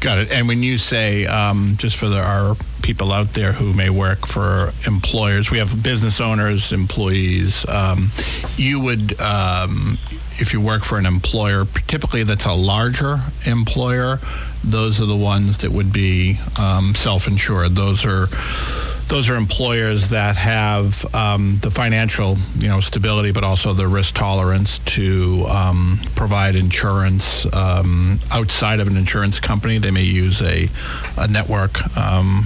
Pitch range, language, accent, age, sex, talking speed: 90-105 Hz, English, American, 50-69, male, 150 wpm